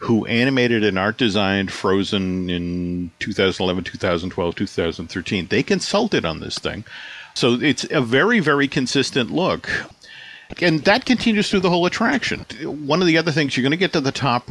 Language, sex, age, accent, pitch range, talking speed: English, male, 50-69, American, 105-140 Hz, 170 wpm